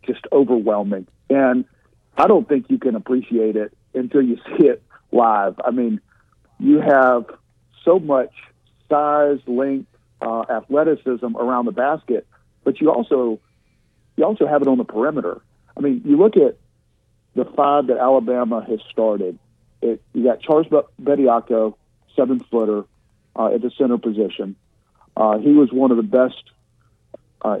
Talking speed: 150 wpm